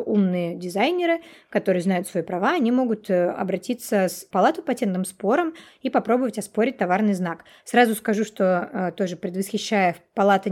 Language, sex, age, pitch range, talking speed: Russian, female, 20-39, 190-240 Hz, 135 wpm